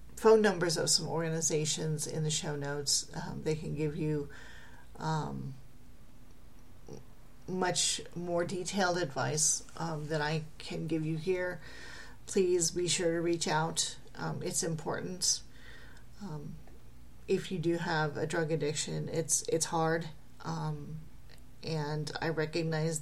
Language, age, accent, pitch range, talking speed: English, 40-59, American, 130-170 Hz, 130 wpm